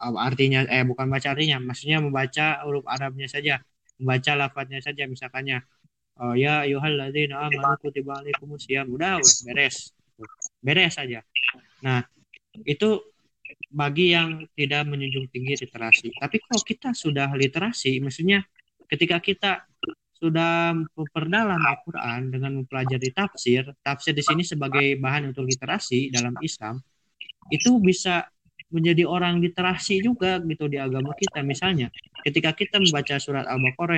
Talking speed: 125 wpm